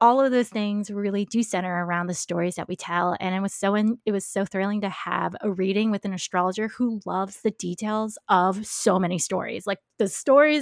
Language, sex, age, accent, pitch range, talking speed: English, female, 20-39, American, 195-240 Hz, 225 wpm